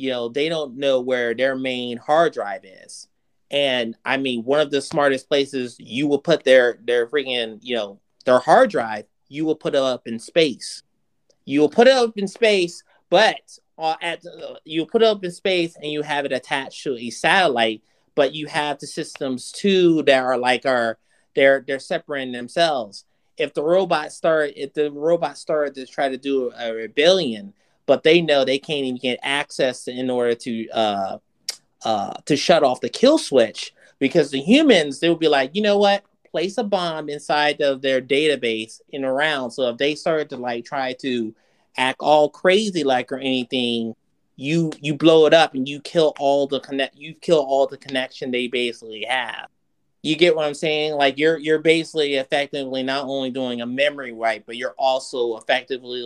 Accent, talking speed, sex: American, 195 wpm, male